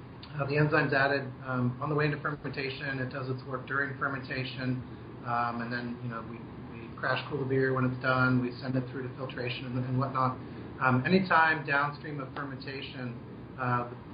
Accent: American